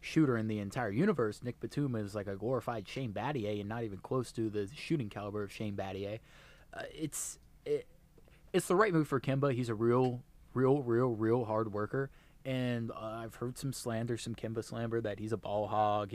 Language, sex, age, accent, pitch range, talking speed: English, male, 20-39, American, 110-140 Hz, 205 wpm